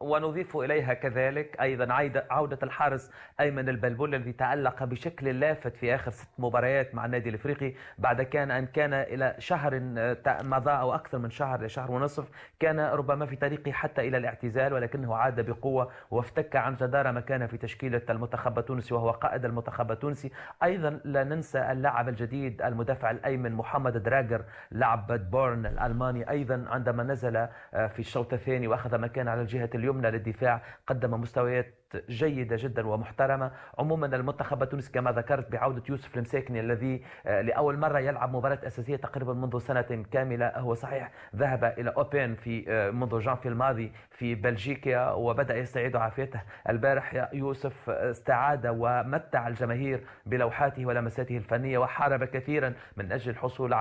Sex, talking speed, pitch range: male, 145 wpm, 120-140 Hz